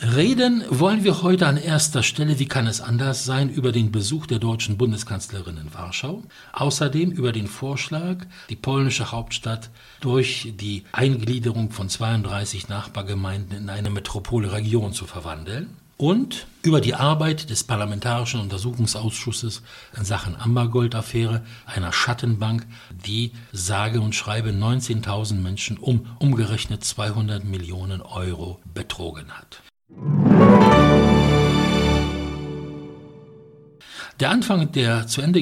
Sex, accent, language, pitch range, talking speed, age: male, German, English, 100-140 Hz, 115 wpm, 60-79